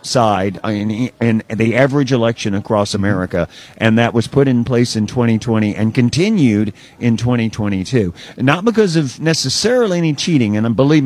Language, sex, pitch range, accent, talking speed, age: English, male, 110-135 Hz, American, 150 wpm, 50-69